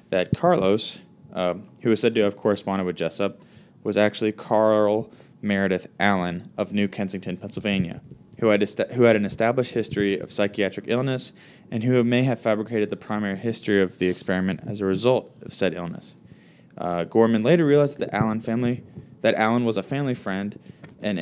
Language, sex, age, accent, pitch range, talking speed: English, male, 20-39, American, 95-115 Hz, 165 wpm